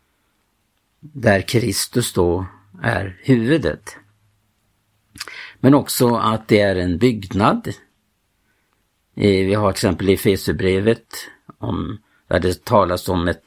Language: Swedish